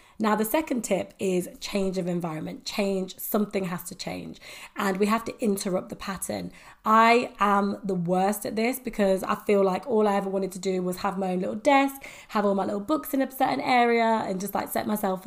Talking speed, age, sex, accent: 220 wpm, 20-39, female, British